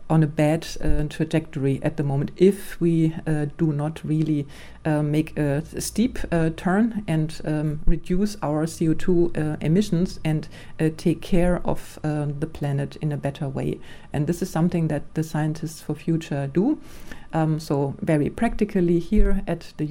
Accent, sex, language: German, female, English